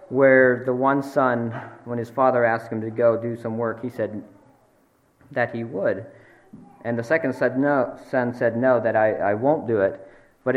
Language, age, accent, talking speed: English, 40-59, American, 195 wpm